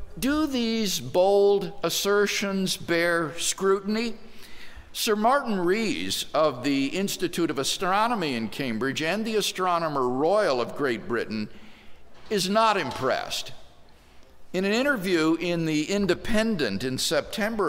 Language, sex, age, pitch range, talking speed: English, male, 50-69, 135-210 Hz, 115 wpm